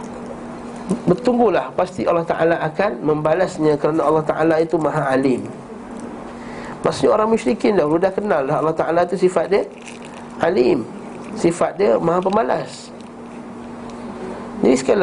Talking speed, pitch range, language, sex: 120 wpm, 160-205 Hz, Malay, male